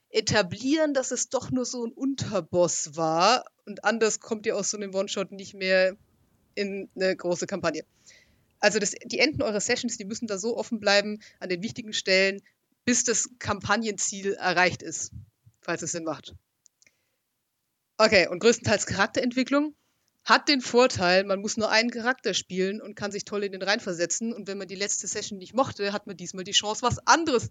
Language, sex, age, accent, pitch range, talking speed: German, female, 30-49, German, 180-225 Hz, 180 wpm